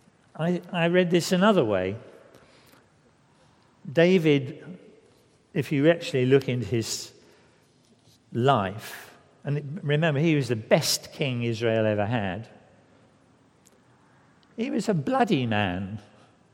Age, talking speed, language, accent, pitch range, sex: 60-79, 105 wpm, English, British, 120-165 Hz, male